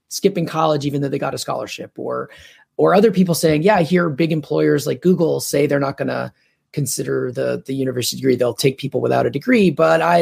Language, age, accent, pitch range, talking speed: English, 30-49, American, 135-175 Hz, 225 wpm